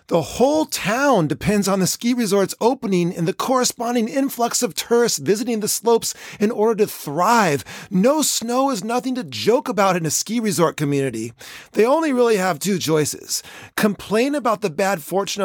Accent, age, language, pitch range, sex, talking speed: American, 40-59, English, 185-240 Hz, male, 175 wpm